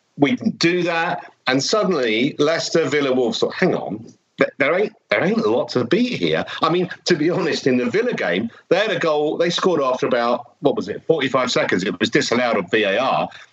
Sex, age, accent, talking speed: male, 50-69, British, 215 wpm